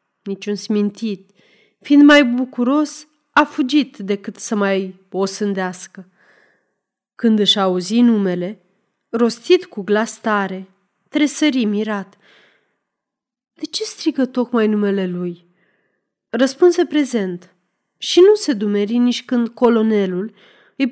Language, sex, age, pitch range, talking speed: Romanian, female, 30-49, 195-265 Hz, 110 wpm